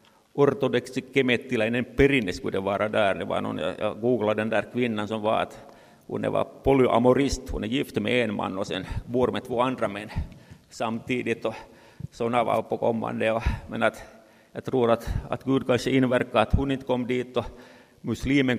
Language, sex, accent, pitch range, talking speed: Swedish, male, Finnish, 115-135 Hz, 145 wpm